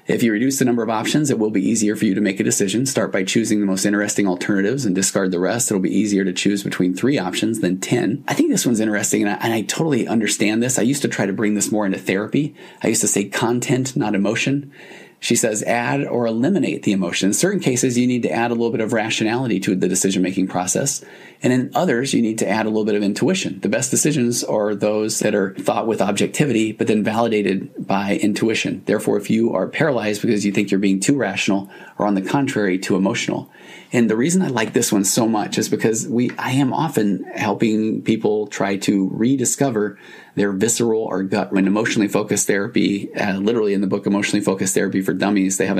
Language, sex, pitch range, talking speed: English, male, 95-115 Hz, 230 wpm